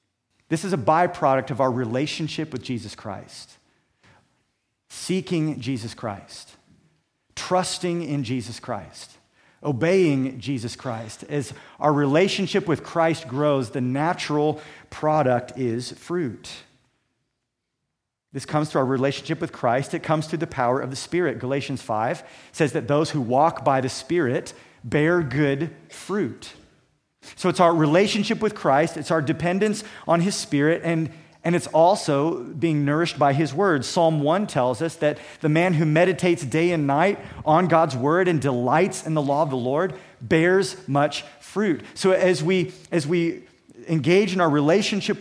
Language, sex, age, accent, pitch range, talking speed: English, male, 40-59, American, 135-175 Hz, 150 wpm